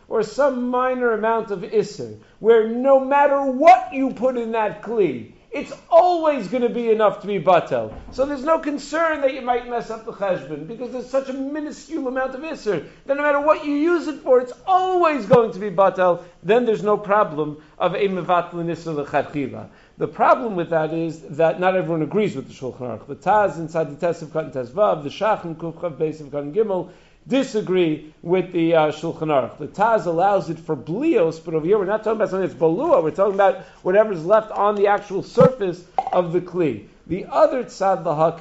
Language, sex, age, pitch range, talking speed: English, male, 50-69, 160-230 Hz, 205 wpm